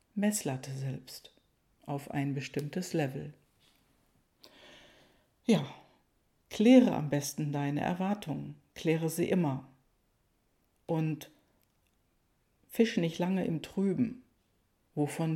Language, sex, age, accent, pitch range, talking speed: German, female, 60-79, German, 145-185 Hz, 85 wpm